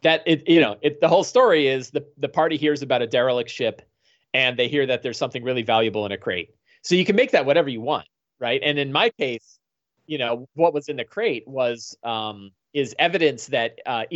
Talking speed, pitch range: 230 wpm, 110-155 Hz